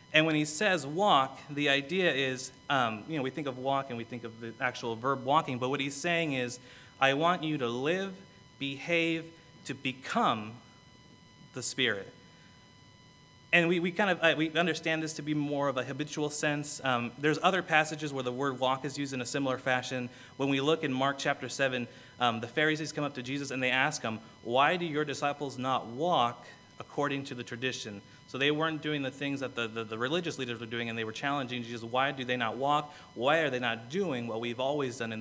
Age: 30-49